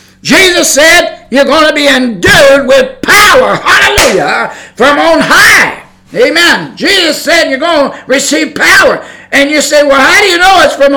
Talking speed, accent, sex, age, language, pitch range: 170 wpm, American, male, 50-69, English, 190-285 Hz